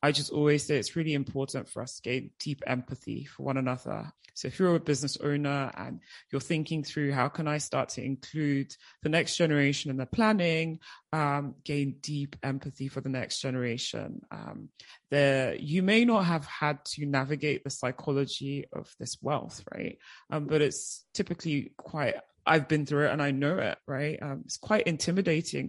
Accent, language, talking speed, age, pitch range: British, English, 185 wpm, 20-39, 135-160 Hz